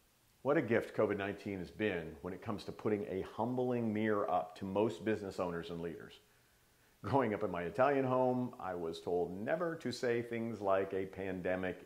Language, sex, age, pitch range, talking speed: English, male, 50-69, 105-150 Hz, 185 wpm